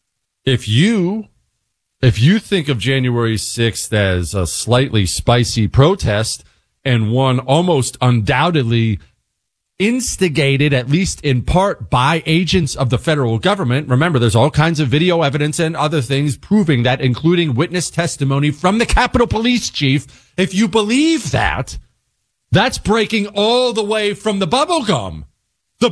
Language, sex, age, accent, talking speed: English, male, 40-59, American, 145 wpm